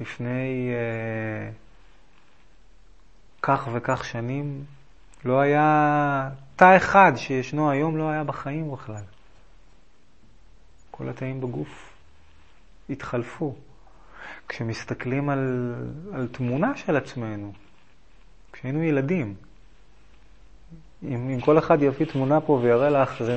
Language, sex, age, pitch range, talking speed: Hebrew, male, 30-49, 115-165 Hz, 95 wpm